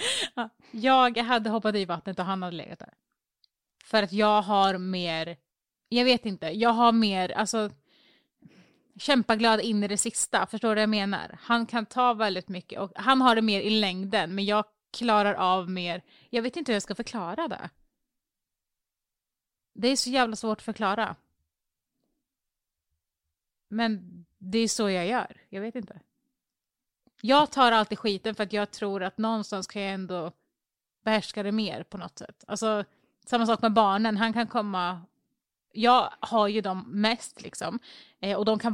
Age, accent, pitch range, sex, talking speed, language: 30-49, native, 185-225 Hz, female, 170 wpm, Swedish